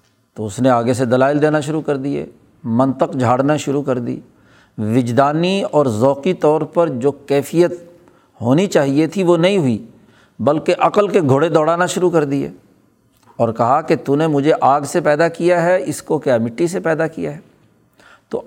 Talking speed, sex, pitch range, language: 180 wpm, male, 130-175 Hz, Urdu